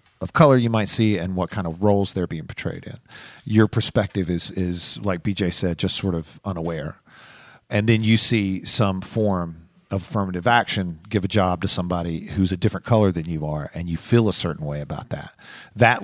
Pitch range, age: 90-115 Hz, 40-59